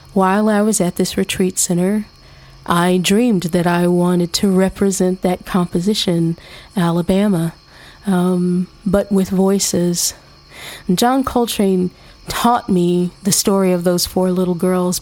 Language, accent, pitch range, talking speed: English, American, 180-205 Hz, 130 wpm